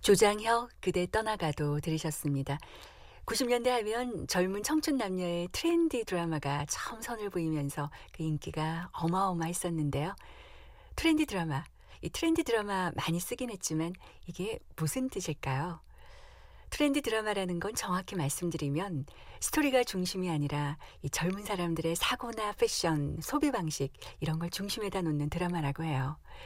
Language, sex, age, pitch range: Korean, female, 50-69, 160-220 Hz